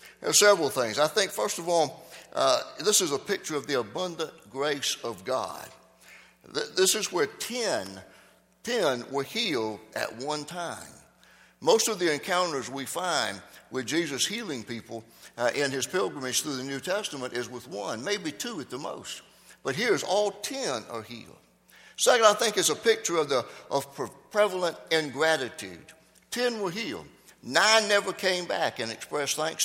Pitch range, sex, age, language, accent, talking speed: 135-190 Hz, male, 60-79, English, American, 175 wpm